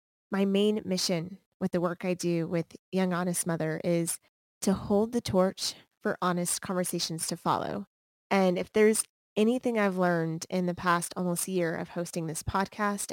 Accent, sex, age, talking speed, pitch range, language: American, female, 20-39, 170 wpm, 175-200 Hz, English